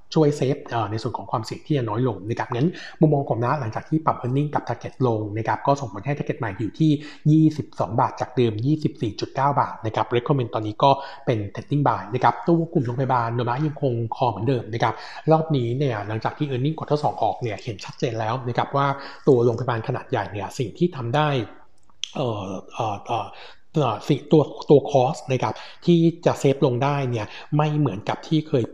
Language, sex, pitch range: Thai, male, 120-145 Hz